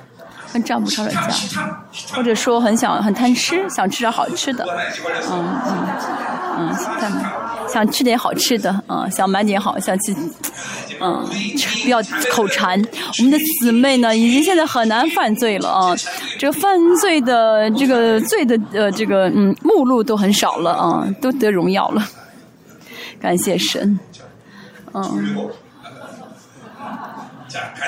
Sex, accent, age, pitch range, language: female, native, 20-39, 210-270 Hz, Chinese